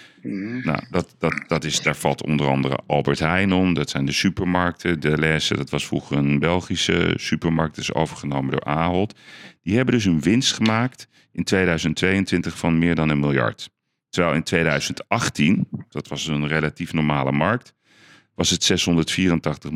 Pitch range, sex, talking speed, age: 80-100 Hz, male, 165 wpm, 40-59